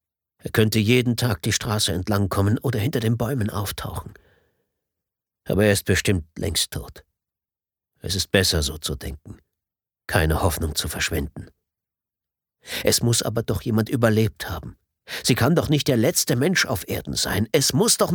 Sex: male